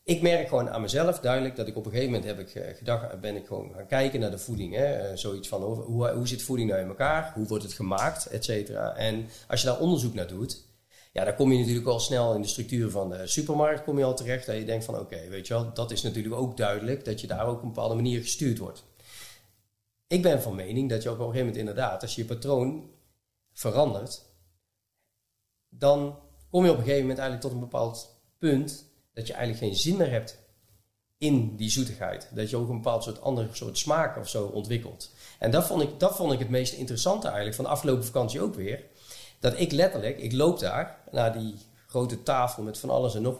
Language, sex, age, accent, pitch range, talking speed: Dutch, male, 40-59, Dutch, 110-135 Hz, 230 wpm